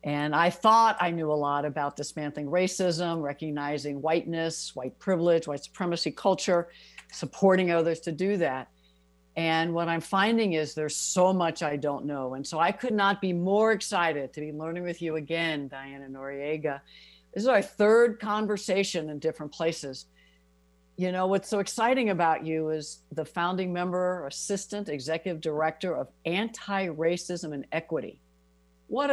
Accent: American